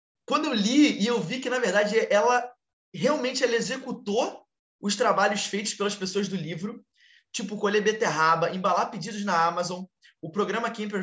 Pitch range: 170-255 Hz